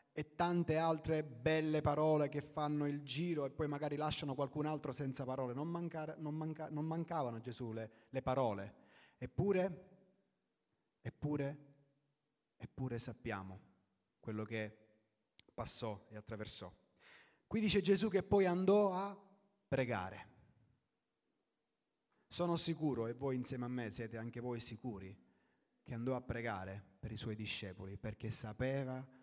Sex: male